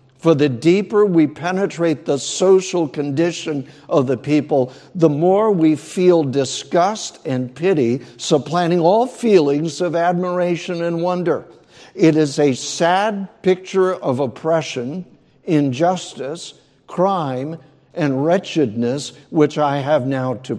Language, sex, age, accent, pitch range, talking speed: English, male, 60-79, American, 125-160 Hz, 120 wpm